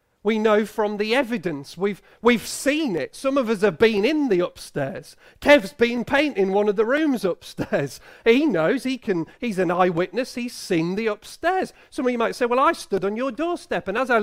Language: English